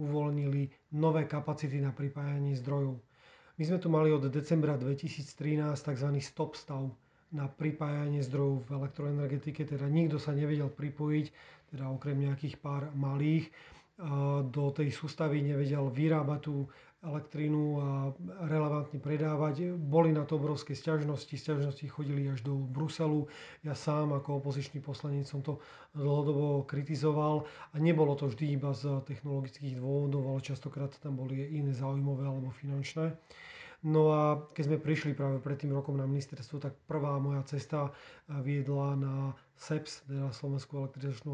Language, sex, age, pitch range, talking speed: Slovak, male, 30-49, 140-150 Hz, 145 wpm